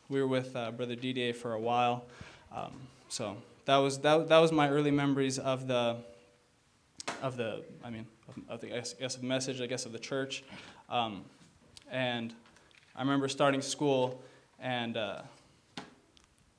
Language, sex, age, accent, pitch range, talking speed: English, male, 20-39, American, 125-145 Hz, 165 wpm